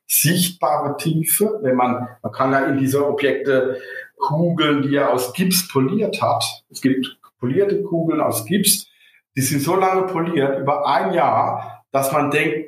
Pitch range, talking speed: 140-175 Hz, 160 wpm